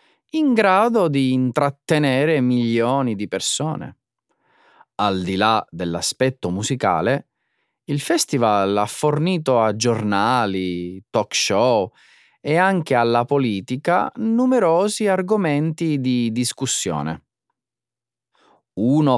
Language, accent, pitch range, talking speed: Italian, native, 110-175 Hz, 90 wpm